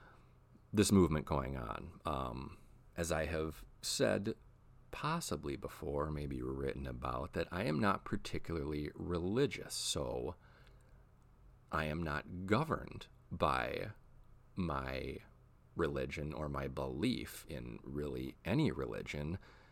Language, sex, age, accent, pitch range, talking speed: English, male, 40-59, American, 75-115 Hz, 105 wpm